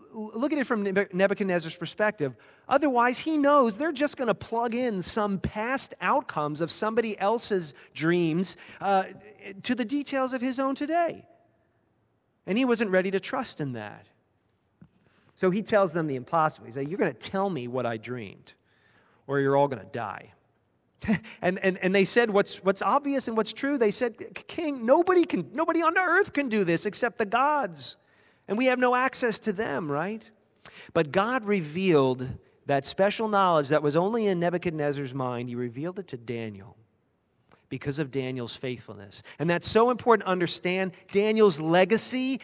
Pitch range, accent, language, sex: 150-225 Hz, American, English, male